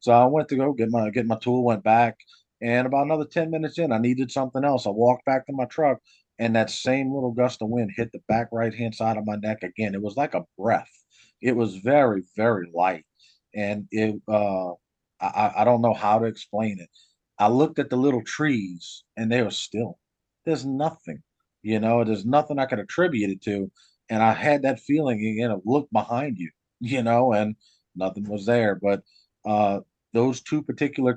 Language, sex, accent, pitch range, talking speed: English, male, American, 100-120 Hz, 210 wpm